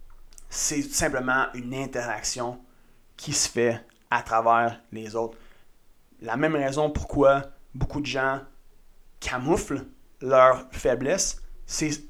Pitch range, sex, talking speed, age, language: 120-155 Hz, male, 115 wpm, 30-49, French